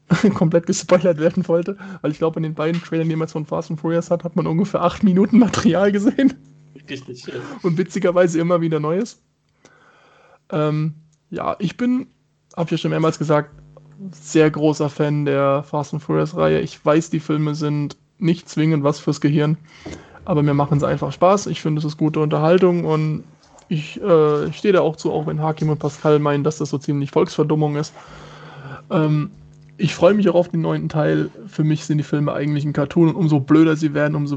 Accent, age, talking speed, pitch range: German, 20-39, 195 wpm, 150-170 Hz